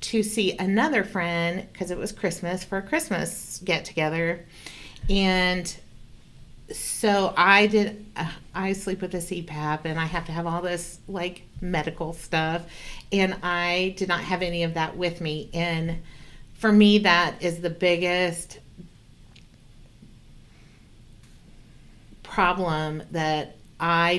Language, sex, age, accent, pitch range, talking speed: English, female, 40-59, American, 155-190 Hz, 130 wpm